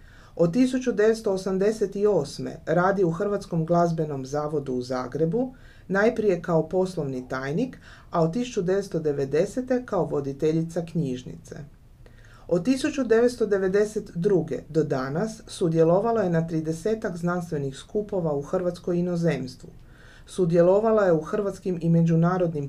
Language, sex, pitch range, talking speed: Croatian, female, 155-205 Hz, 100 wpm